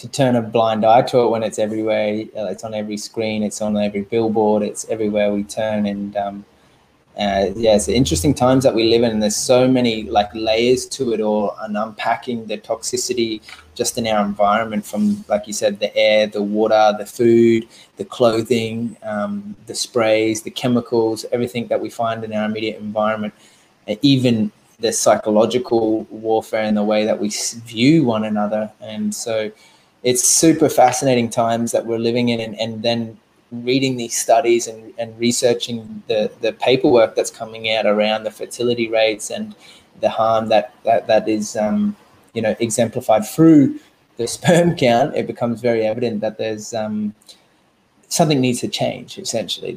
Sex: male